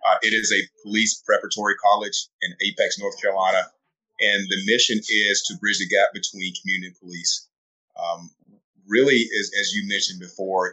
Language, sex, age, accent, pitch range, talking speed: English, male, 30-49, American, 95-150 Hz, 170 wpm